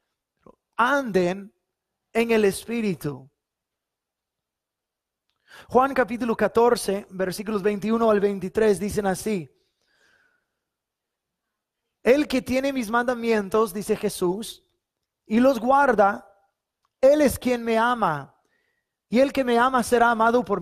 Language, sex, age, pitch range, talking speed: English, male, 30-49, 185-235 Hz, 105 wpm